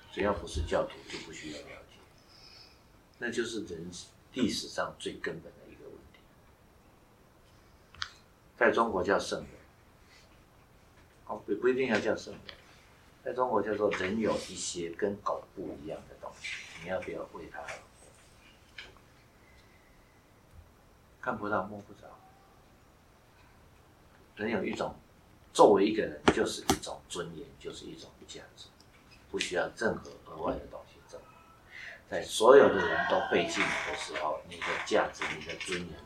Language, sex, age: Chinese, male, 60-79